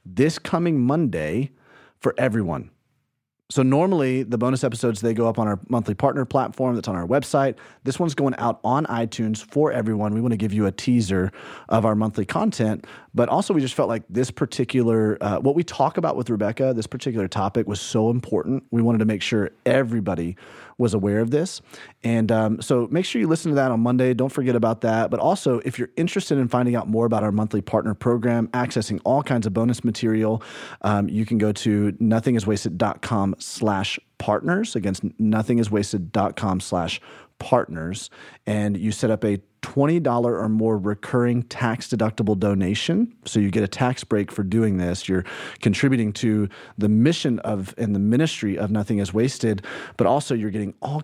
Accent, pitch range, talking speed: American, 105-125 Hz, 185 wpm